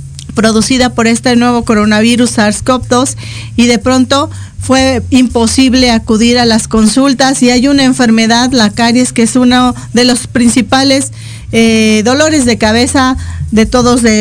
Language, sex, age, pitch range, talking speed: Spanish, female, 40-59, 220-260 Hz, 140 wpm